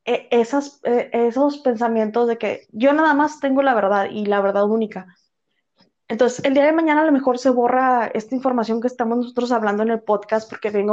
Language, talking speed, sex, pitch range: Spanish, 200 wpm, female, 210-265 Hz